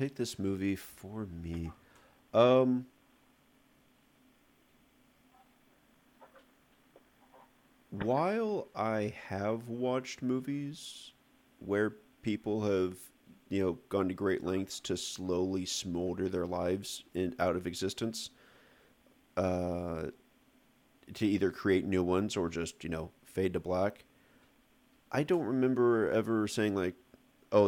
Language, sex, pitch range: English, male, 90-110 Hz